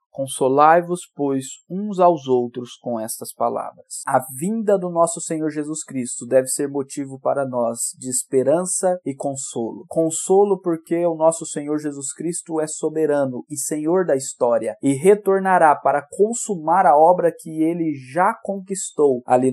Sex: male